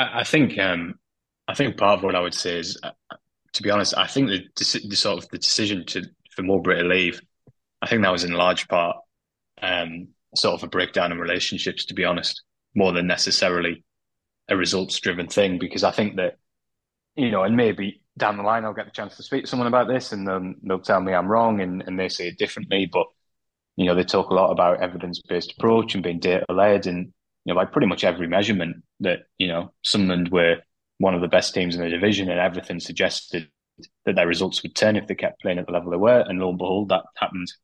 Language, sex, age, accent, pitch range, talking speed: English, male, 20-39, British, 90-105 Hz, 235 wpm